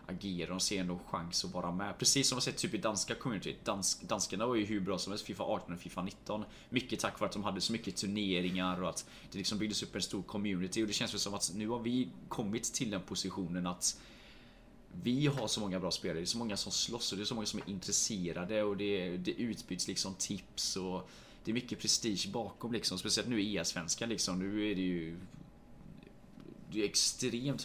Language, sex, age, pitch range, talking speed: Swedish, male, 20-39, 90-110 Hz, 230 wpm